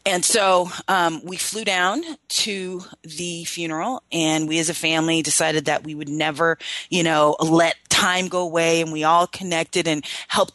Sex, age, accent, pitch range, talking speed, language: female, 30-49, American, 155-190 Hz, 175 wpm, English